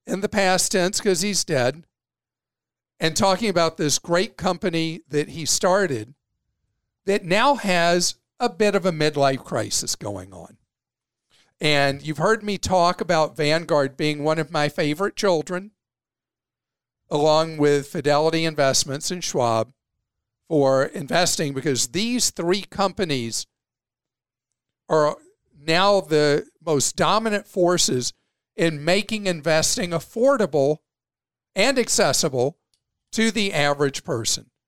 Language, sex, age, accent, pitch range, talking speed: English, male, 50-69, American, 125-185 Hz, 120 wpm